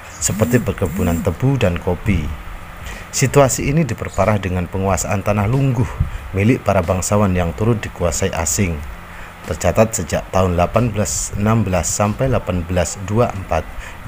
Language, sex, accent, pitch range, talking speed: Indonesian, male, native, 85-105 Hz, 105 wpm